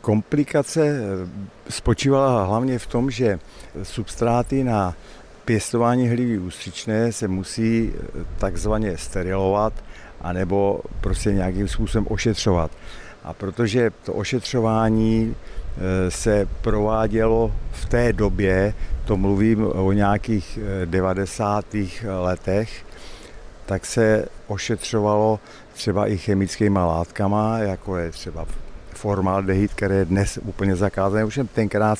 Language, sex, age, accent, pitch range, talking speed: Czech, male, 50-69, native, 95-110 Hz, 100 wpm